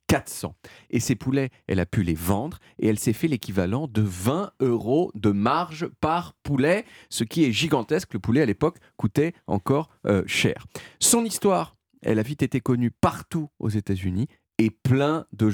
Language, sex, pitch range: French, male, 110-160 Hz